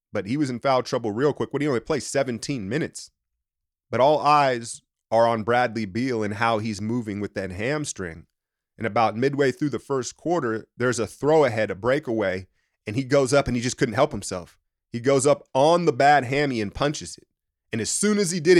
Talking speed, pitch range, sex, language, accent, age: 215 wpm, 115-150 Hz, male, English, American, 30-49